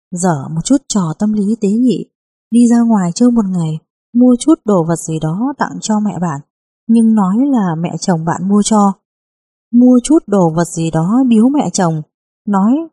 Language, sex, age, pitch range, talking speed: Vietnamese, female, 20-39, 175-235 Hz, 195 wpm